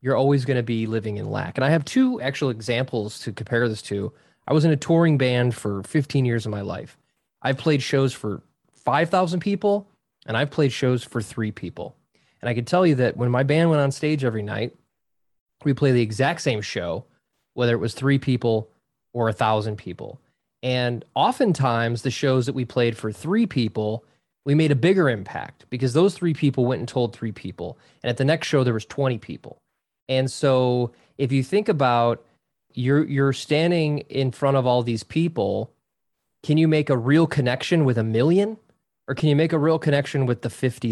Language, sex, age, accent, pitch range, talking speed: English, male, 20-39, American, 115-150 Hz, 200 wpm